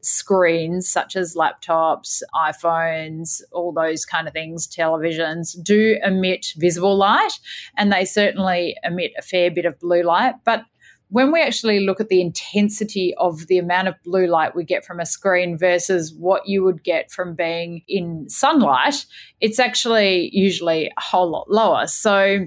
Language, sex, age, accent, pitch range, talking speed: English, female, 30-49, Australian, 170-205 Hz, 165 wpm